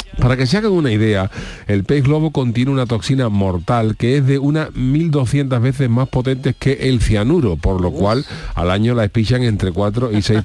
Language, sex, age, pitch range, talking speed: Spanish, male, 40-59, 105-130 Hz, 200 wpm